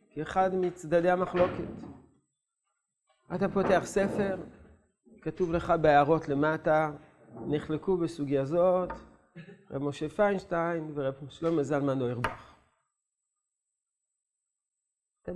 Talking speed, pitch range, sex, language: 80 wpm, 145-195 Hz, male, English